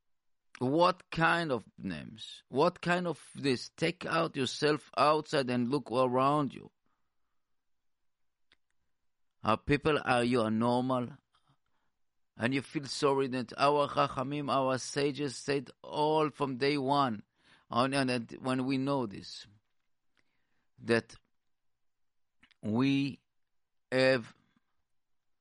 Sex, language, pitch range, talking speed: male, English, 115-145 Hz, 100 wpm